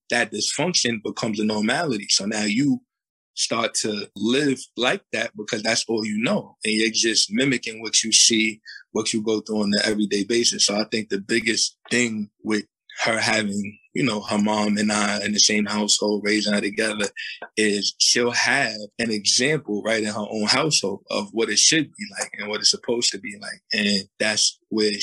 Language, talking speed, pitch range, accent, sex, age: English, 195 wpm, 100-110 Hz, American, male, 20-39